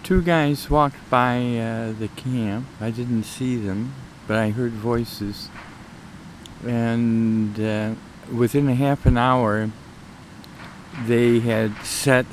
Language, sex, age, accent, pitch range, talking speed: English, male, 50-69, American, 105-130 Hz, 120 wpm